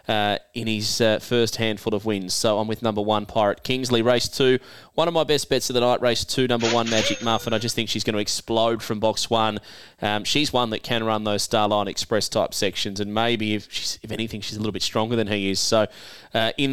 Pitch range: 105-125 Hz